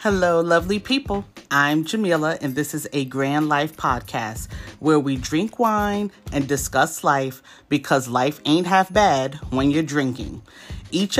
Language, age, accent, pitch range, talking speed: English, 30-49, American, 135-185 Hz, 150 wpm